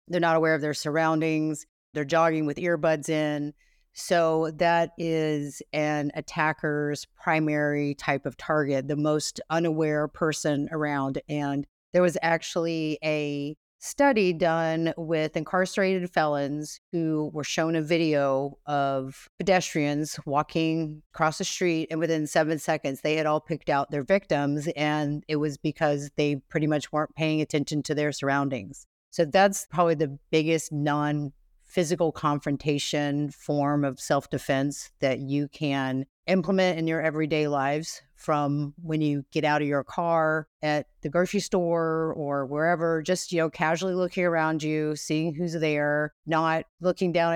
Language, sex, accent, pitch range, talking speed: English, female, American, 145-165 Hz, 145 wpm